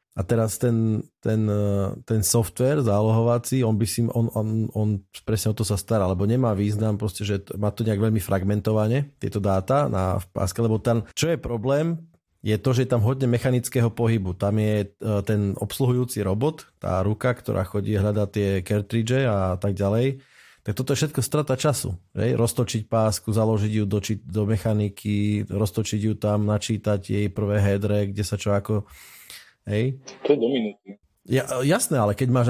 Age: 30-49